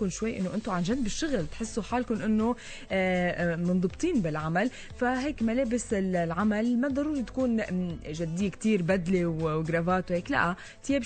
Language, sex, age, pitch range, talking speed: English, female, 20-39, 180-225 Hz, 130 wpm